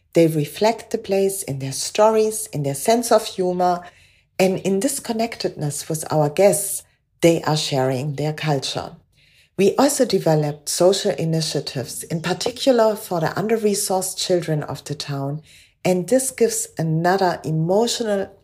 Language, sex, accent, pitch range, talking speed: English, female, German, 150-210 Hz, 140 wpm